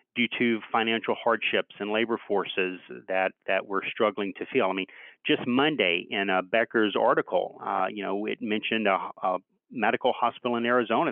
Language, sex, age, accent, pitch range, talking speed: English, male, 40-59, American, 110-130 Hz, 175 wpm